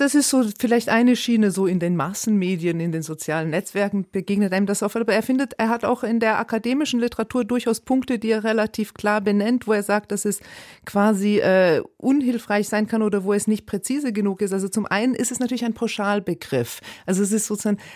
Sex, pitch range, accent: female, 180-220 Hz, German